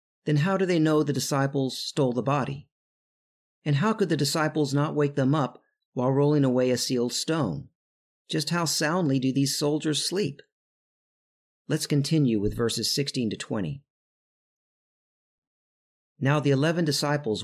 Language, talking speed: English, 150 wpm